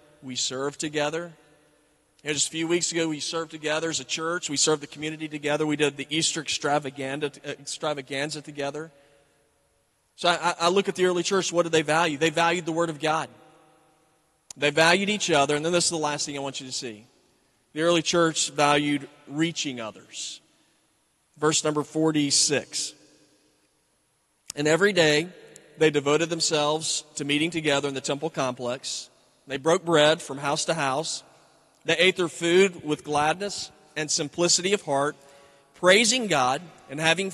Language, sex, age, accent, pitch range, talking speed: English, male, 40-59, American, 140-165 Hz, 165 wpm